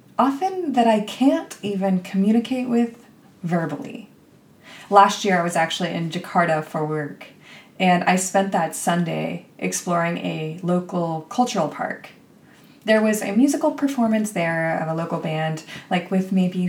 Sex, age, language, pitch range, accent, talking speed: female, 20-39, English, 170-235 Hz, American, 145 wpm